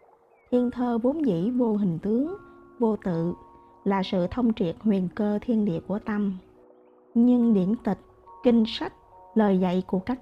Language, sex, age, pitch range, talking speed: Vietnamese, female, 20-39, 190-240 Hz, 165 wpm